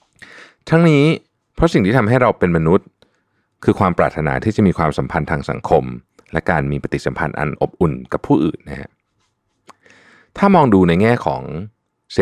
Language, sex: Thai, male